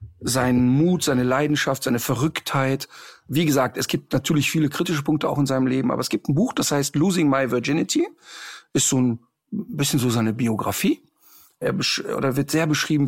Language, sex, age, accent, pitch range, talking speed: German, male, 50-69, German, 140-180 Hz, 190 wpm